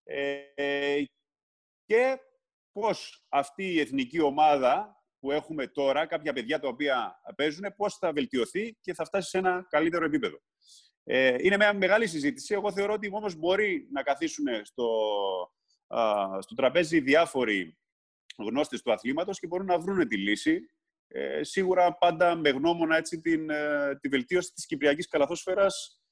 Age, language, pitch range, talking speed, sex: 30-49, Greek, 135-195 Hz, 140 wpm, male